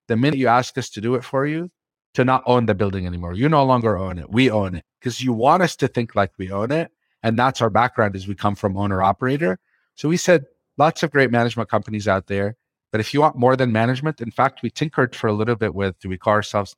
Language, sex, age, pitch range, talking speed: English, male, 40-59, 100-130 Hz, 265 wpm